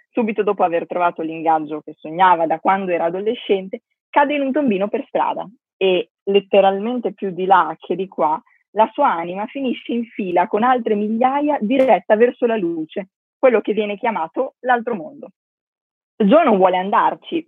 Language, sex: Italian, female